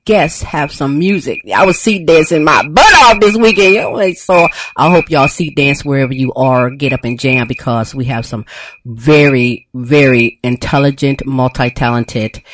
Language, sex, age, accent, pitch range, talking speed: English, female, 40-59, American, 120-145 Hz, 165 wpm